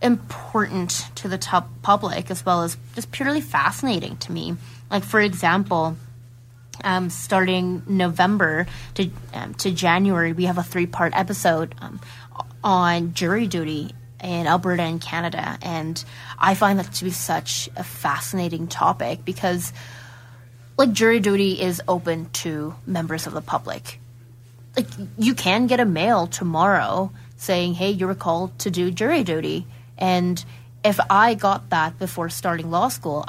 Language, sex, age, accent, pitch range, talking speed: English, female, 20-39, American, 125-200 Hz, 150 wpm